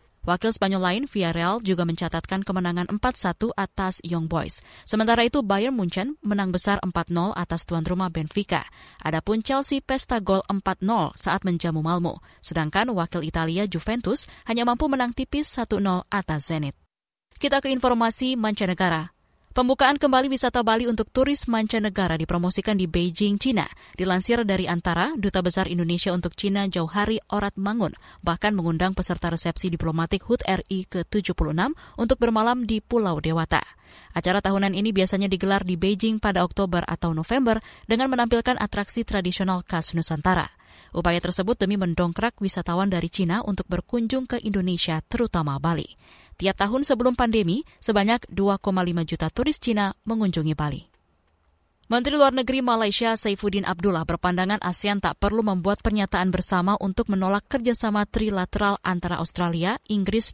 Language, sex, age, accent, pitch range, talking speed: Indonesian, female, 20-39, native, 175-225 Hz, 140 wpm